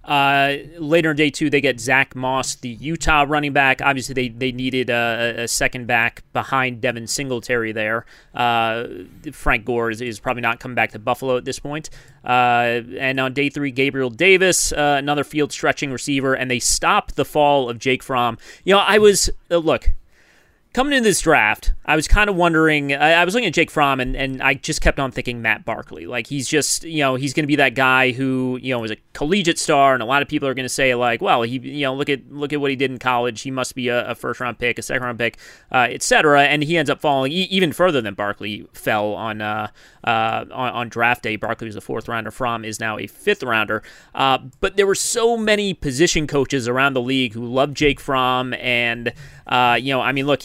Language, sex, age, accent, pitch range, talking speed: English, male, 30-49, American, 120-145 Hz, 225 wpm